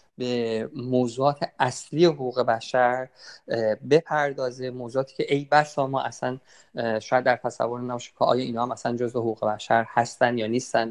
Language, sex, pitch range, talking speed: Persian, male, 115-140 Hz, 160 wpm